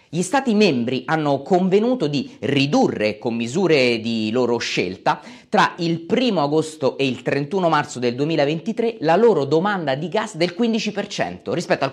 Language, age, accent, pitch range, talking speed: Italian, 30-49, native, 130-195 Hz, 155 wpm